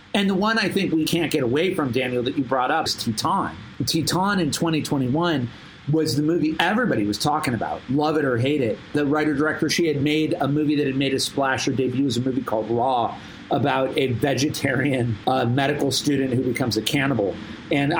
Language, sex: English, male